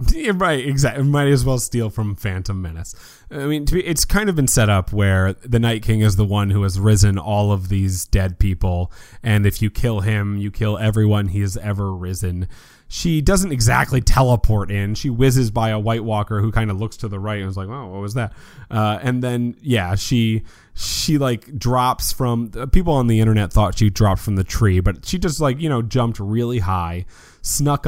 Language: English